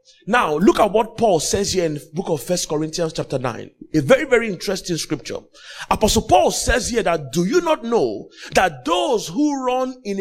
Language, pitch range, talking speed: English, 170-280 Hz, 200 wpm